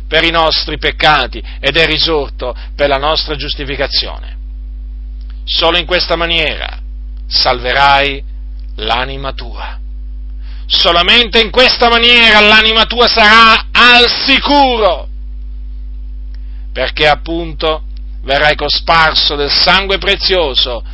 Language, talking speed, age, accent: Italian, 95 wpm, 40-59, native